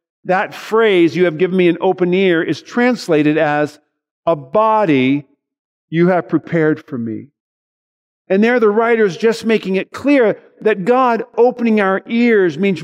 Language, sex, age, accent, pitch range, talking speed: English, male, 50-69, American, 155-230 Hz, 160 wpm